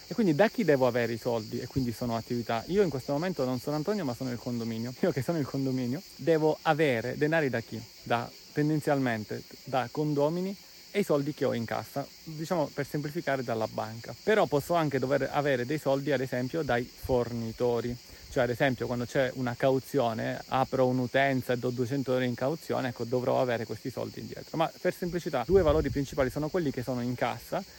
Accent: native